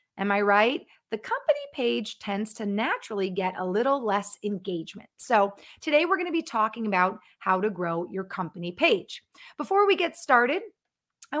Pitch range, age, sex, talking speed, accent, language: 195-275 Hz, 30-49, female, 175 wpm, American, English